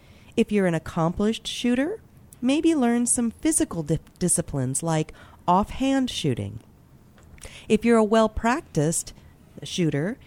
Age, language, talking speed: 40-59, English, 105 wpm